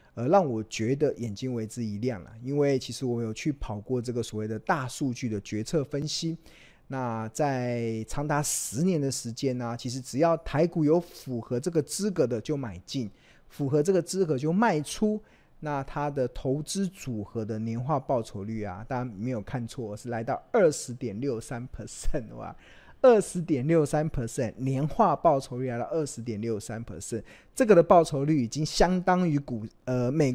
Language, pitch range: Chinese, 115-155 Hz